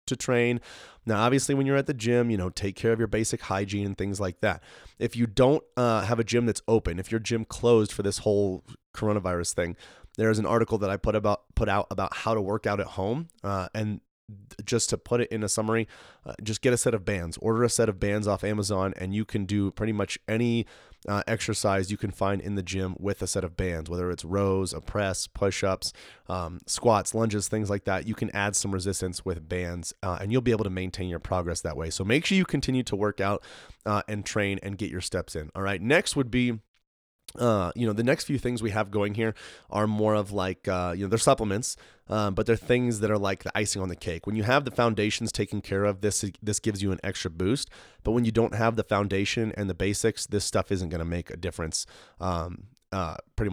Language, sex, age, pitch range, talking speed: English, male, 20-39, 95-115 Hz, 240 wpm